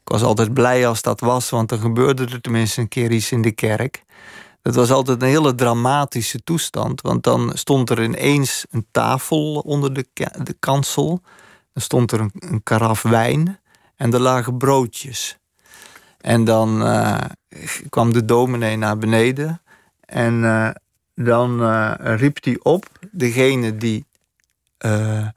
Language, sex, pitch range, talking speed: Dutch, male, 115-145 Hz, 155 wpm